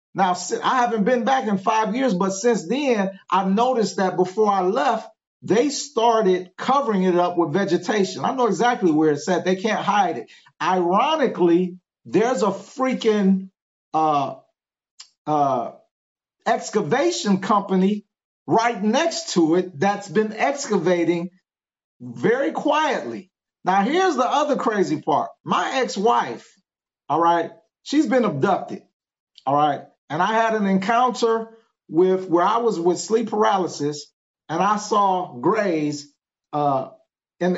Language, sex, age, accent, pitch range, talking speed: English, male, 50-69, American, 175-225 Hz, 135 wpm